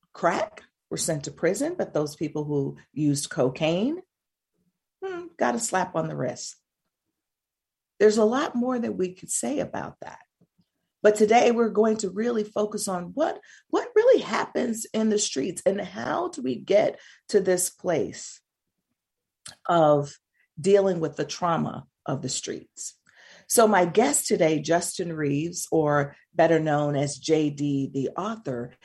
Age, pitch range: 40-59, 150-215 Hz